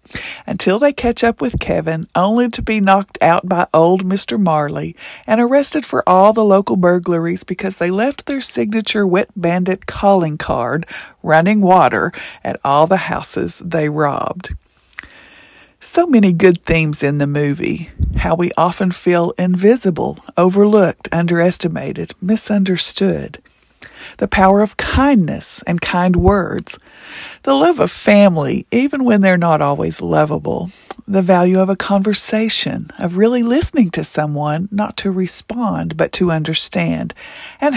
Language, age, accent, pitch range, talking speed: English, 50-69, American, 170-220 Hz, 140 wpm